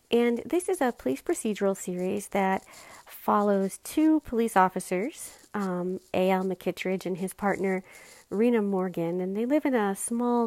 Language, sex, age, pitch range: English, female, 40-59, 180-230 Hz